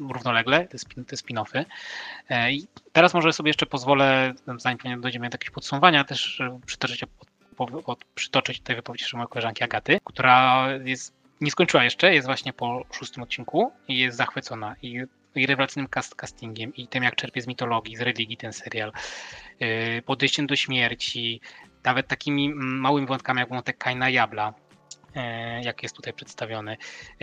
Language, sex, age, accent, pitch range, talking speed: Polish, male, 20-39, native, 120-135 Hz, 145 wpm